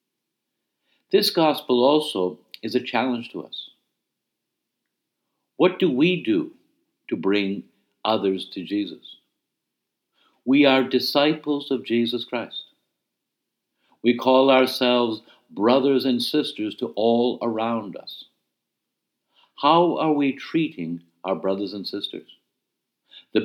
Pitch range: 110-140 Hz